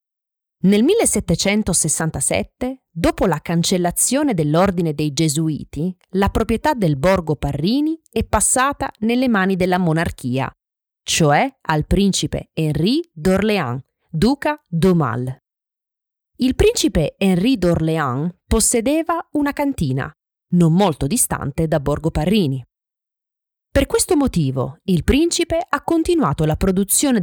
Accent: native